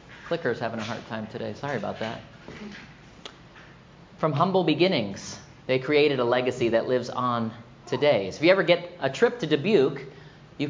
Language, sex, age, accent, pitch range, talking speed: English, male, 30-49, American, 125-160 Hz, 165 wpm